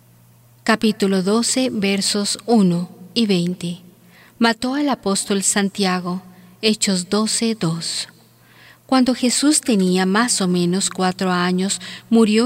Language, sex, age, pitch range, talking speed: Spanish, female, 40-59, 180-220 Hz, 105 wpm